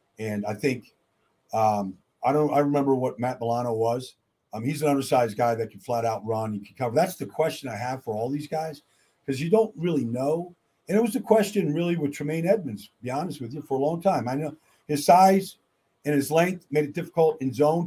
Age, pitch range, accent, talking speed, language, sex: 50-69, 130-160 Hz, American, 230 wpm, English, male